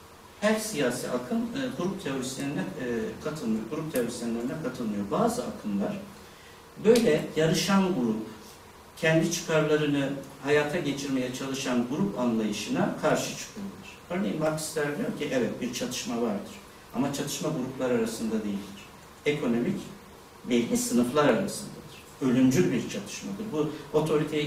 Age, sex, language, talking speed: 60-79, male, Turkish, 110 wpm